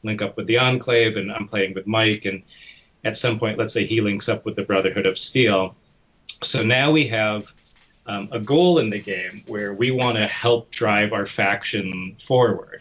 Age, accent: 30-49, American